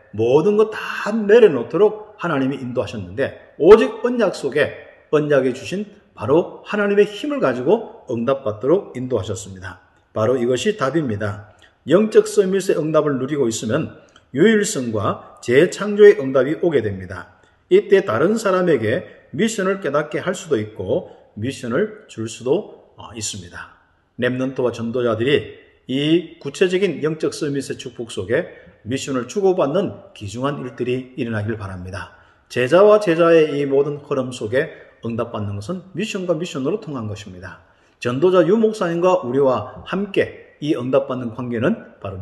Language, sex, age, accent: Korean, male, 40-59, native